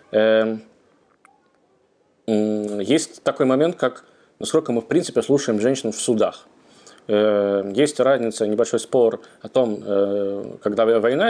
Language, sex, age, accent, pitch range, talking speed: Russian, male, 20-39, native, 110-135 Hz, 105 wpm